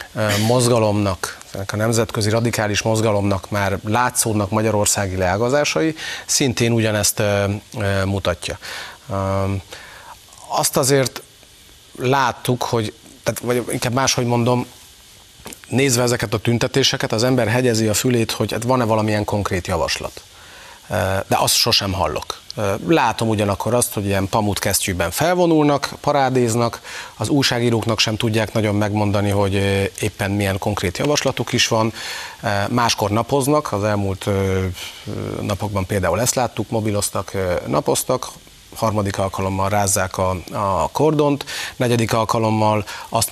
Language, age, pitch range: Hungarian, 30-49, 100-120 Hz